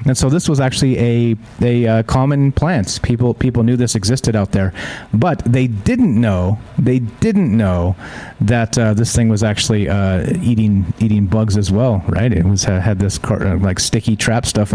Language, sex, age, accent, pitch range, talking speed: English, male, 30-49, American, 105-140 Hz, 200 wpm